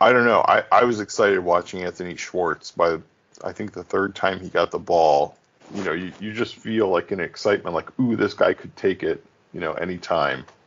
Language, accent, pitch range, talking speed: English, American, 85-105 Hz, 220 wpm